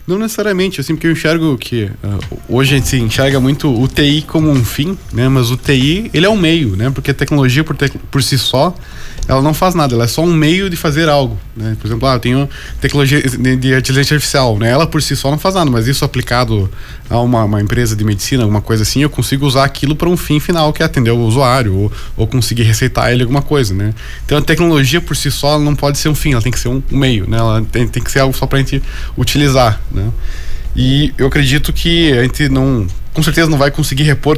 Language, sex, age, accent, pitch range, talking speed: Portuguese, male, 20-39, Brazilian, 120-145 Hz, 250 wpm